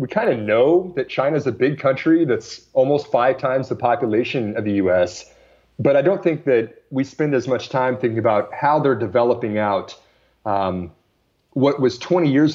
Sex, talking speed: male, 185 wpm